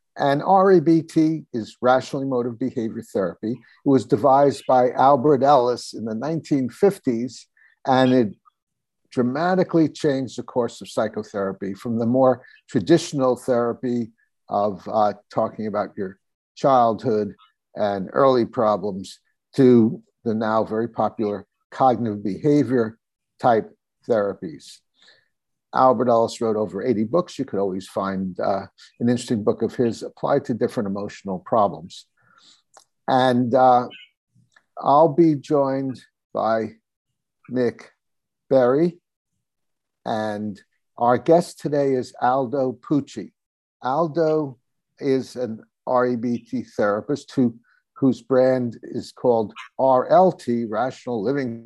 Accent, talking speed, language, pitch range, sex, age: American, 110 wpm, English, 110-135 Hz, male, 60-79